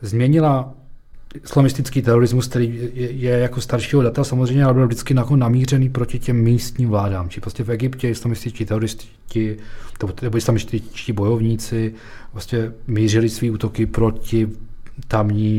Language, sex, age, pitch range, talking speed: Czech, male, 40-59, 100-125 Hz, 125 wpm